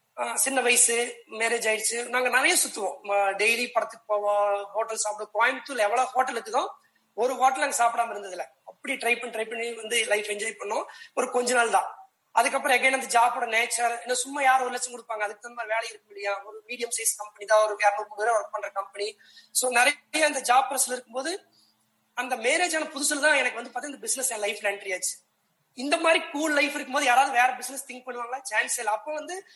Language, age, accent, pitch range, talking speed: Tamil, 20-39, native, 225-270 Hz, 190 wpm